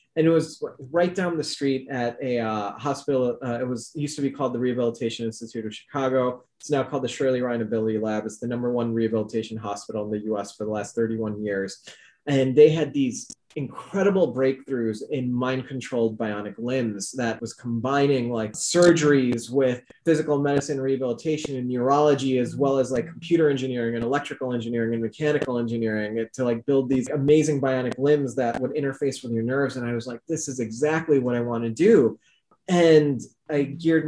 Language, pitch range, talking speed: English, 115-140 Hz, 190 wpm